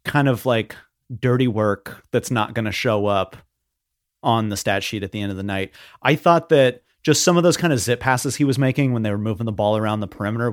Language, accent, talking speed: English, American, 250 wpm